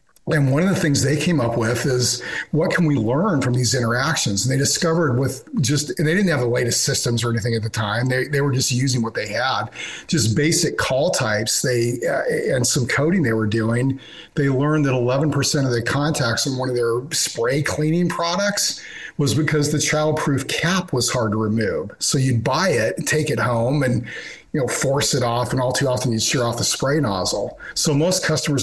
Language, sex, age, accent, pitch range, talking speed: English, male, 40-59, American, 120-155 Hz, 220 wpm